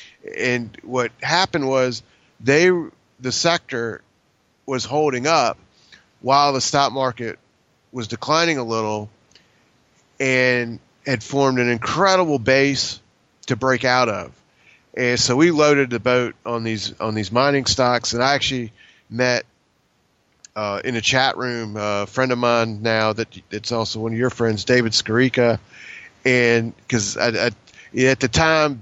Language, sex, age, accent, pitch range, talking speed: English, male, 30-49, American, 110-130 Hz, 145 wpm